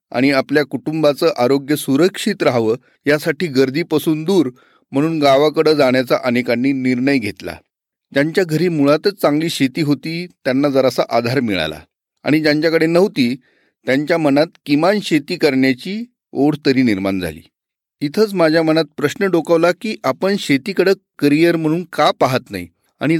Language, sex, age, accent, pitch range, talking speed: Marathi, male, 40-59, native, 130-165 Hz, 130 wpm